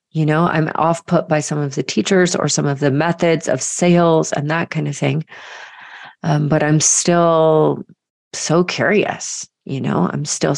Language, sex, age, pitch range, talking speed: English, female, 30-49, 145-185 Hz, 180 wpm